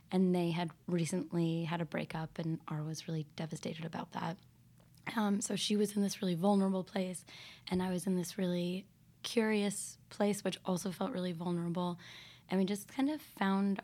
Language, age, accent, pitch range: English, 10-29, American, 165-190 Hz